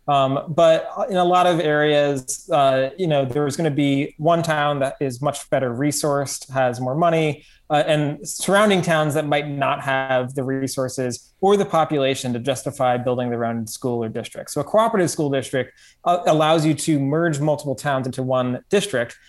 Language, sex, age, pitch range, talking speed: English, male, 20-39, 130-155 Hz, 185 wpm